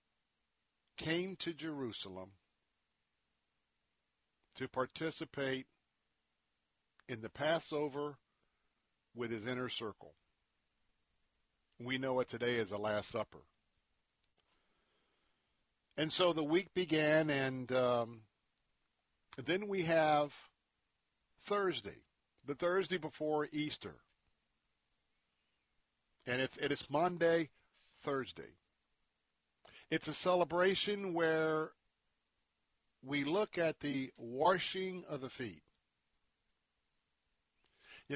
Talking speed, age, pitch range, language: 80 wpm, 50-69, 120-160 Hz, English